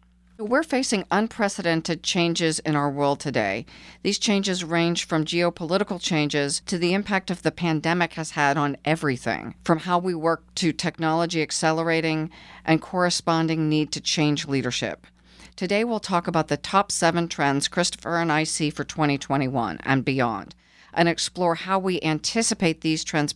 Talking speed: 155 wpm